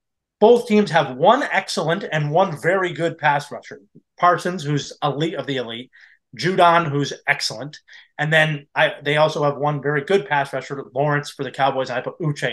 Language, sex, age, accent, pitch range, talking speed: English, male, 30-49, American, 140-190 Hz, 175 wpm